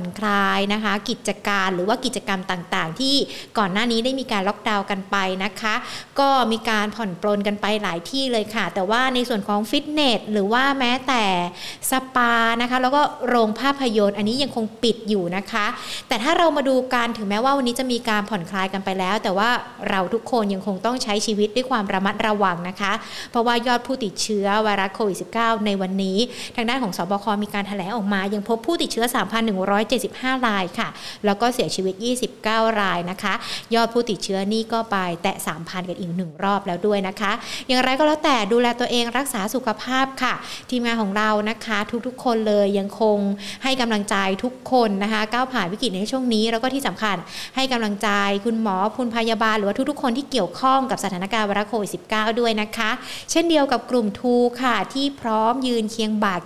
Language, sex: Thai, female